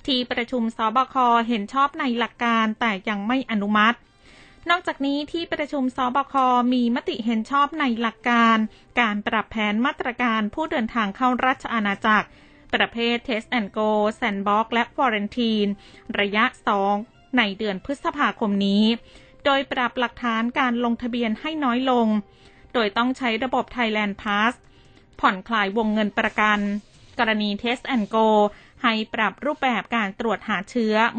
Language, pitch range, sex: Thai, 215-255 Hz, female